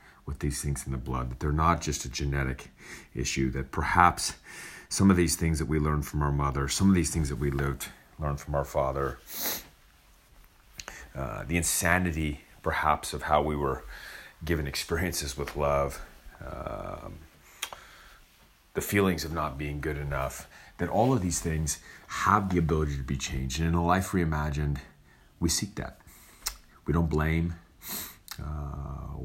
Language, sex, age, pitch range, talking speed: English, male, 30-49, 70-80 Hz, 160 wpm